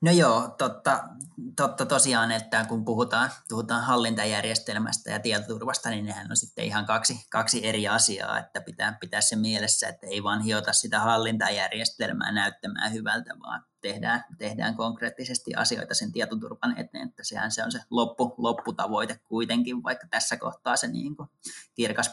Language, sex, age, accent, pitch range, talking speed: Finnish, male, 20-39, native, 105-120 Hz, 150 wpm